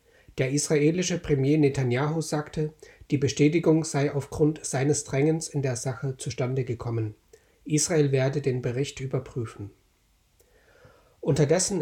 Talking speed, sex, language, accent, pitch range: 110 wpm, male, German, German, 130-155 Hz